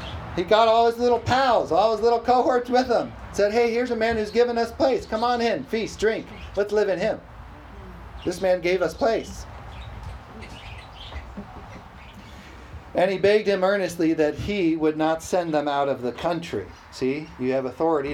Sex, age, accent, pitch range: male, 40-59, American, 165-270 Hz